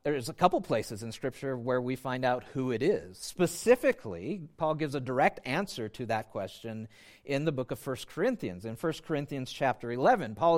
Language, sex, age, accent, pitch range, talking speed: English, male, 40-59, American, 130-180 Hz, 195 wpm